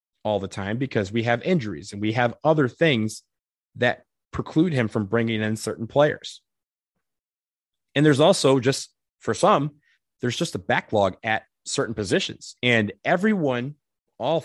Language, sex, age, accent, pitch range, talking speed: English, male, 30-49, American, 105-135 Hz, 150 wpm